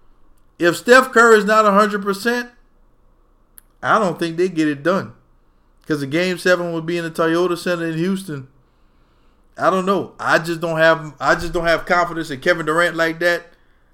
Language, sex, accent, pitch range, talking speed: English, male, American, 145-185 Hz, 185 wpm